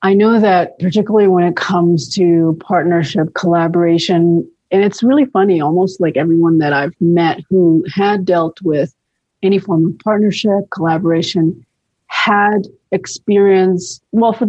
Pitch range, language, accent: 170-195 Hz, English, American